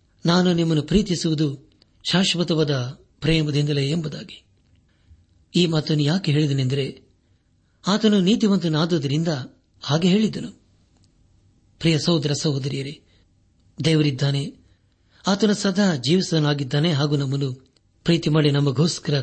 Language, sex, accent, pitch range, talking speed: Kannada, male, native, 110-165 Hz, 70 wpm